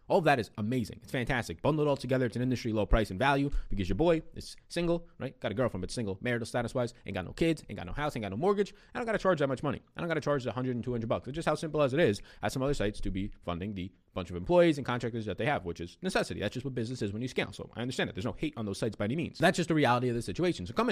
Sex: male